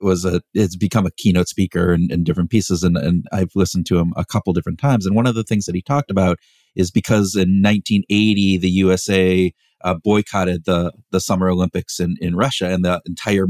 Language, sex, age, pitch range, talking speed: English, male, 40-59, 90-100 Hz, 220 wpm